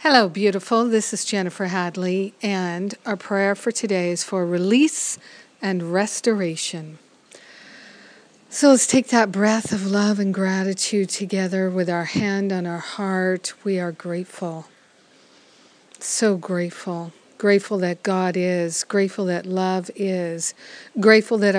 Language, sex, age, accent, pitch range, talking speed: English, female, 50-69, American, 185-210 Hz, 130 wpm